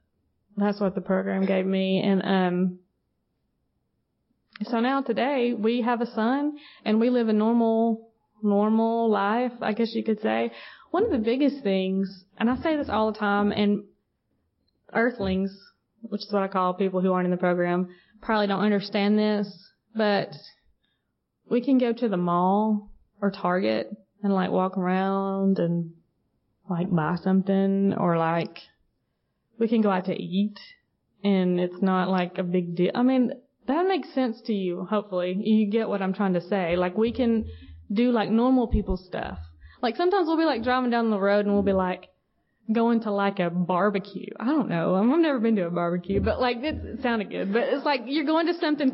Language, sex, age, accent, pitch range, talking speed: English, female, 20-39, American, 185-235 Hz, 185 wpm